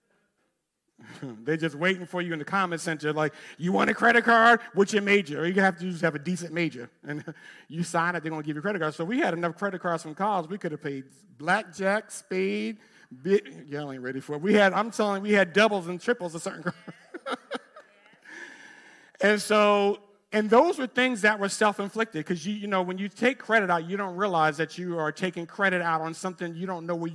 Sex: male